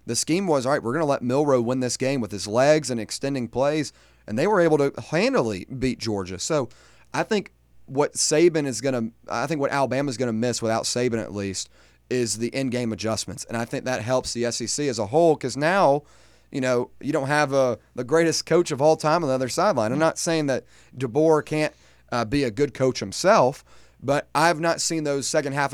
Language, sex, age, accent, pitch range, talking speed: English, male, 30-49, American, 115-135 Hz, 230 wpm